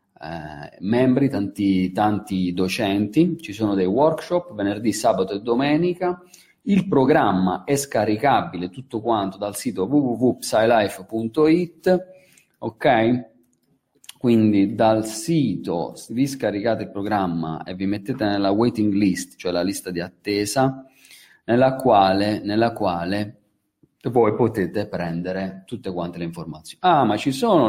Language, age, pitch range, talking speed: Italian, 40-59, 95-125 Hz, 120 wpm